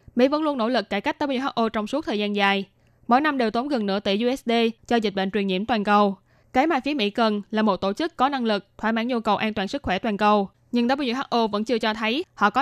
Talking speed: 275 wpm